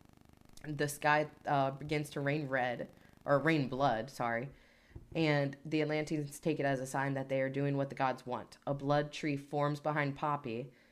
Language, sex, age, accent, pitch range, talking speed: English, female, 20-39, American, 130-150 Hz, 180 wpm